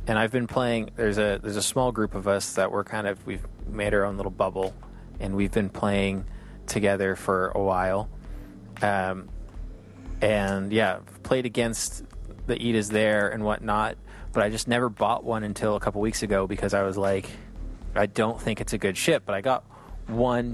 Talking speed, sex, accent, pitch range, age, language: 195 wpm, male, American, 95-120 Hz, 30-49, English